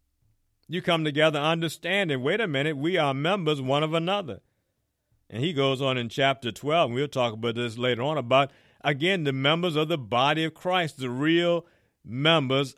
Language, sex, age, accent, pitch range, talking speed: English, male, 50-69, American, 135-170 Hz, 185 wpm